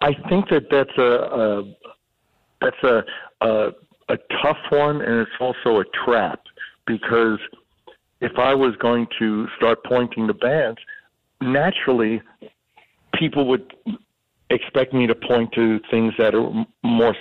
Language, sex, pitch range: English, male, 100-125 Hz